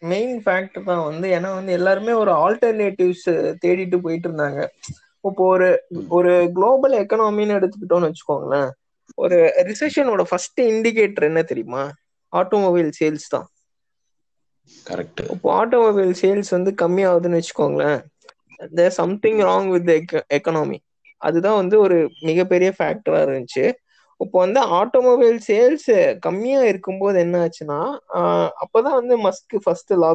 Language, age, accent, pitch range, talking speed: Tamil, 20-39, native, 175-250 Hz, 50 wpm